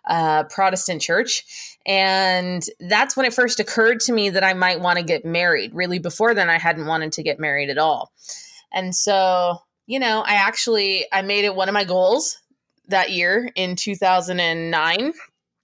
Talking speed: 175 wpm